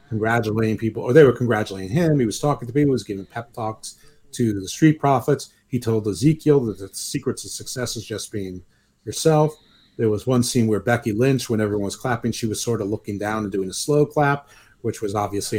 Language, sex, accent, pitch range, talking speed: English, male, American, 105-145 Hz, 225 wpm